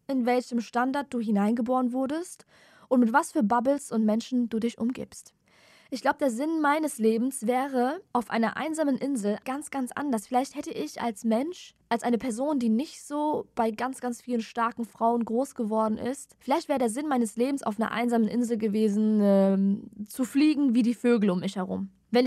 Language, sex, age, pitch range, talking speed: German, female, 20-39, 220-275 Hz, 190 wpm